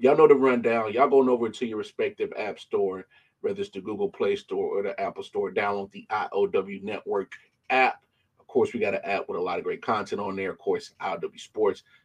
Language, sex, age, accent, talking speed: English, male, 30-49, American, 225 wpm